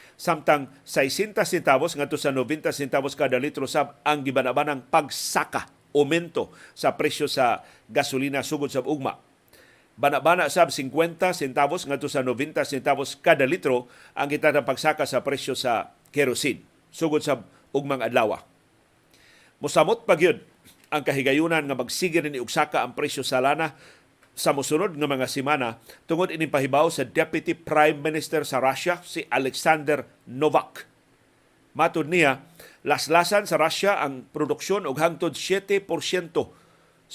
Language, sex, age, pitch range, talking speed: Filipino, male, 50-69, 135-160 Hz, 130 wpm